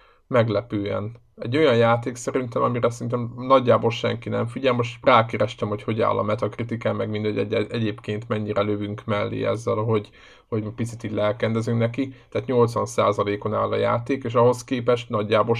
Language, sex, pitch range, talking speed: Hungarian, male, 105-120 Hz, 155 wpm